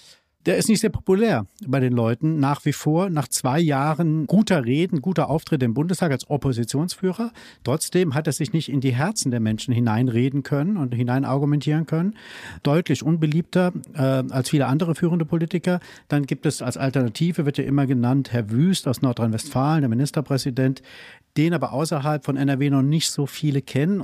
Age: 50-69